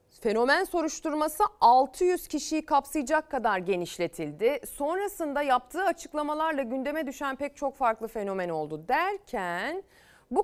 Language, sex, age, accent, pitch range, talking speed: Turkish, female, 30-49, native, 205-290 Hz, 110 wpm